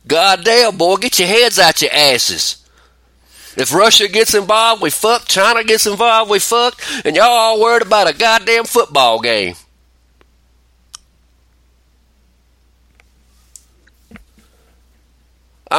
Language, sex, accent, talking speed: English, male, American, 110 wpm